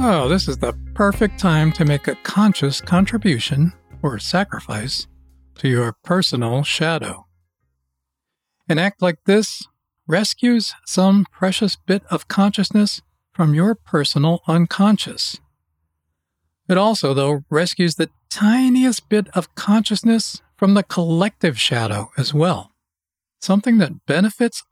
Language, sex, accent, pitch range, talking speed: English, male, American, 135-195 Hz, 120 wpm